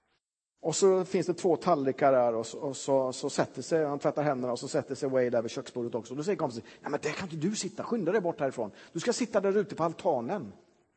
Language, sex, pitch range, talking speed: Swedish, male, 135-195 Hz, 255 wpm